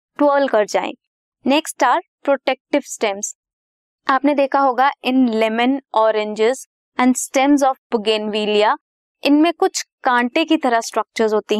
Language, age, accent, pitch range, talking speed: Hindi, 20-39, native, 220-280 Hz, 125 wpm